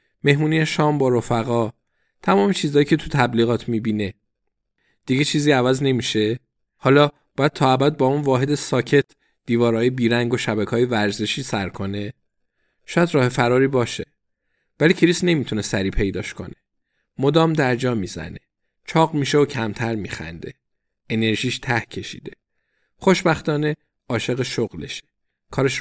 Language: Persian